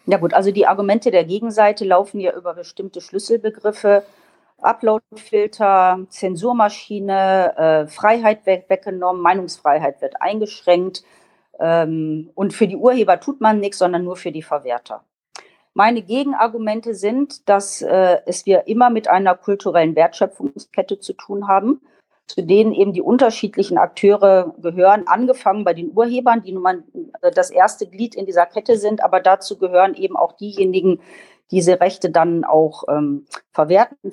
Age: 40-59